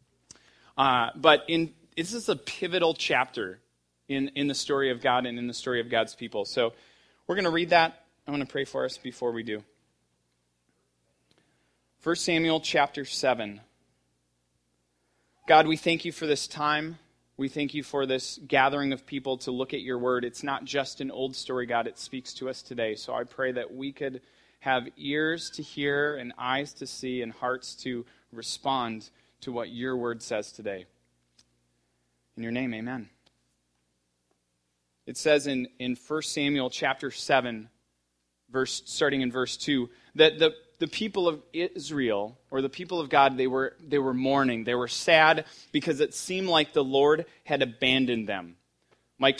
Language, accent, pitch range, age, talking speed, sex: English, American, 110-150 Hz, 30-49, 170 wpm, male